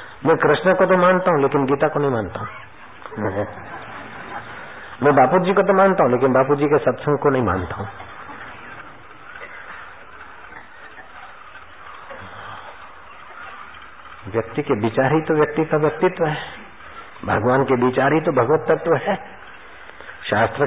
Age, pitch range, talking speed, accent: 50-69, 125-170 Hz, 130 wpm, native